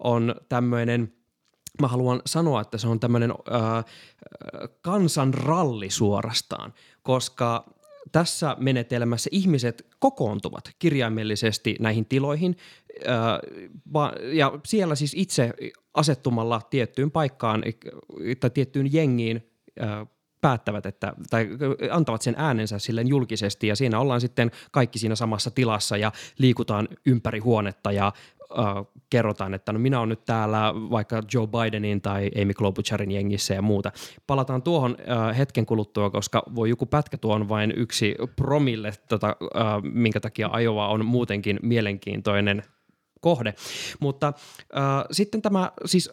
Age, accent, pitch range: 20-39, native, 110-140 Hz